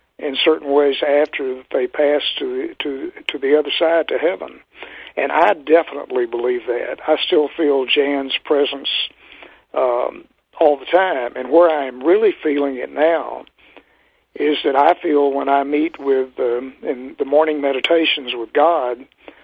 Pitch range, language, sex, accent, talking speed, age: 140-160 Hz, English, male, American, 155 wpm, 60-79